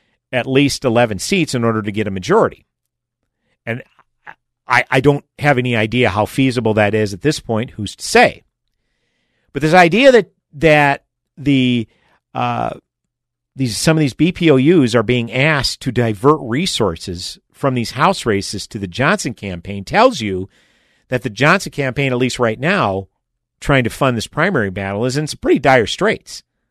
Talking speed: 170 wpm